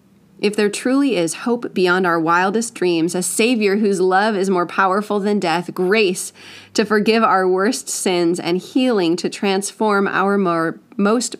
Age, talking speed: 30-49, 160 wpm